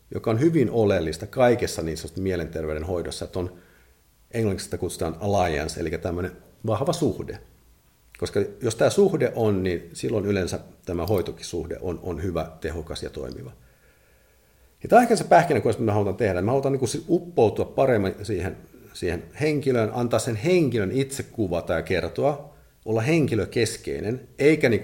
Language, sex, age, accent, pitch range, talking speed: Finnish, male, 50-69, native, 85-115 Hz, 150 wpm